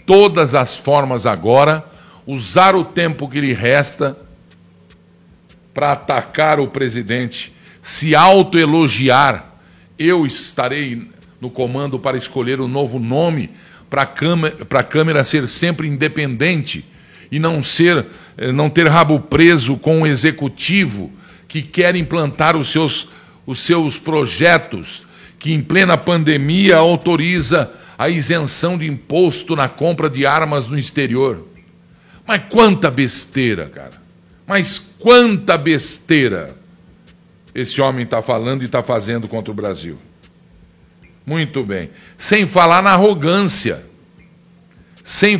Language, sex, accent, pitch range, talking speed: Portuguese, male, Brazilian, 130-175 Hz, 115 wpm